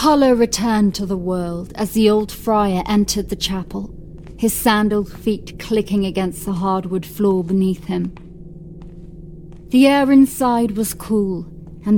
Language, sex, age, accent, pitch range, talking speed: English, female, 40-59, British, 170-215 Hz, 140 wpm